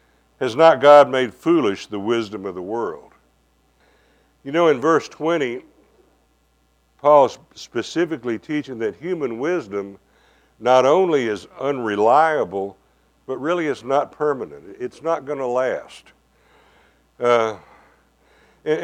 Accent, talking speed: American, 115 wpm